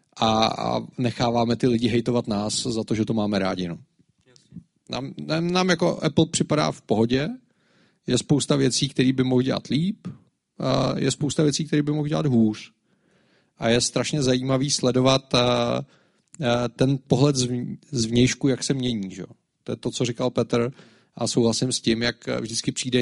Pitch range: 120-135 Hz